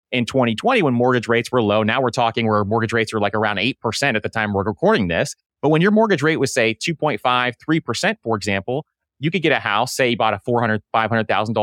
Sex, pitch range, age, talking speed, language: male, 115-145 Hz, 30-49, 220 wpm, English